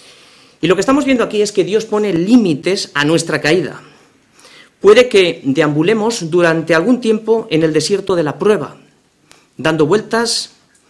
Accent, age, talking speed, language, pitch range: Spanish, 40-59, 155 wpm, Spanish, 150-215 Hz